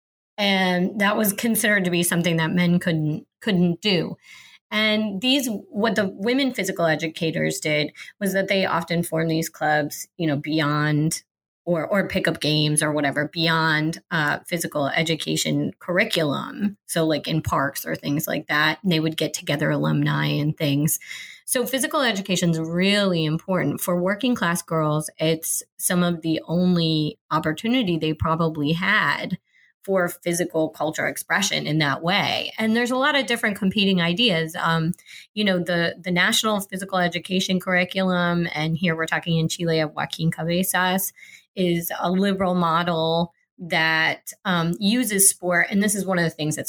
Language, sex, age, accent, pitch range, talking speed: English, female, 30-49, American, 160-195 Hz, 160 wpm